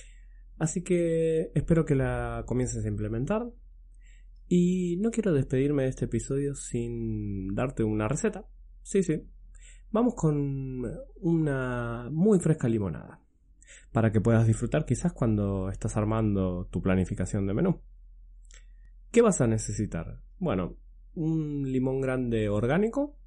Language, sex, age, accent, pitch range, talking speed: Spanish, male, 20-39, Argentinian, 105-150 Hz, 125 wpm